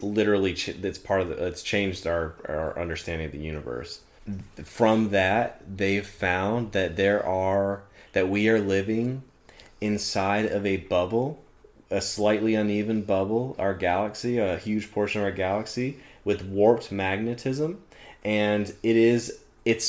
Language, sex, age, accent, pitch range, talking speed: English, male, 30-49, American, 95-110 Hz, 140 wpm